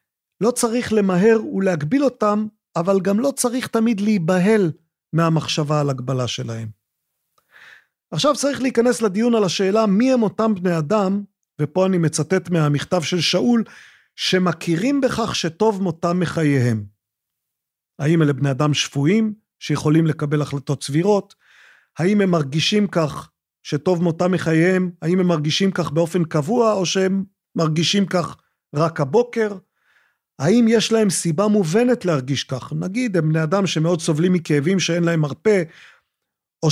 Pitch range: 155-210 Hz